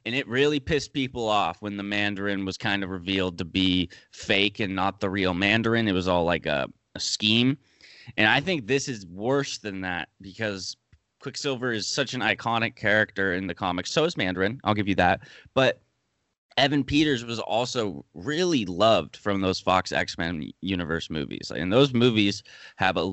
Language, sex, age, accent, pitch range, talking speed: English, male, 20-39, American, 95-125 Hz, 185 wpm